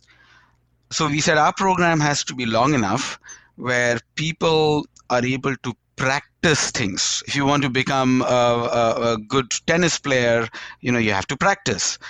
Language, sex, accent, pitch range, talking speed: English, male, Indian, 130-165 Hz, 170 wpm